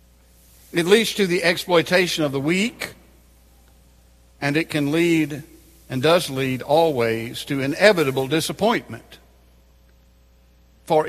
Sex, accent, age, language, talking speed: male, American, 60-79, English, 110 wpm